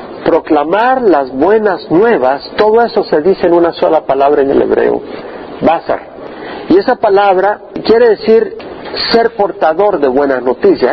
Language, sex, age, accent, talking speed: Spanish, male, 50-69, Mexican, 135 wpm